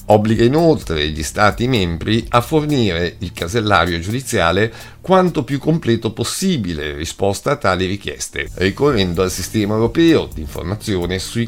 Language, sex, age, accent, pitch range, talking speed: Italian, male, 50-69, native, 90-120 Hz, 130 wpm